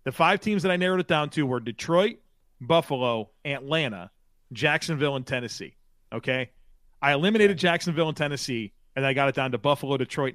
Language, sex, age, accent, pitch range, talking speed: English, male, 40-59, American, 125-160 Hz, 175 wpm